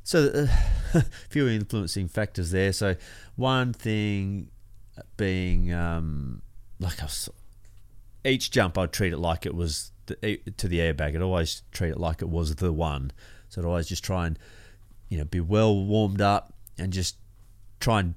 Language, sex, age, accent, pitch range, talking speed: English, male, 30-49, Australian, 85-105 Hz, 170 wpm